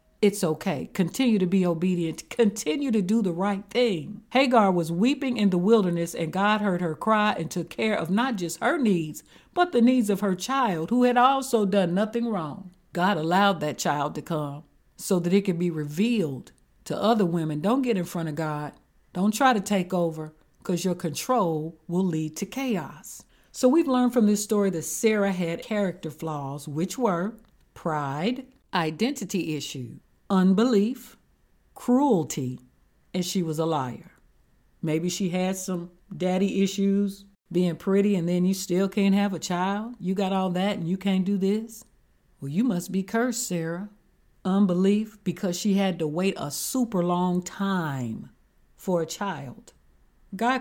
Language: English